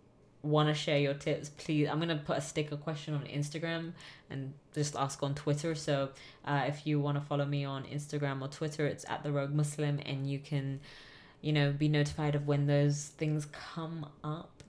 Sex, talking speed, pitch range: female, 205 wpm, 140-155 Hz